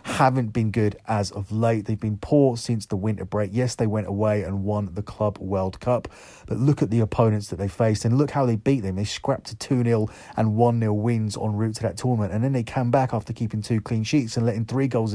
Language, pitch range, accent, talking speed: English, 105-120 Hz, British, 250 wpm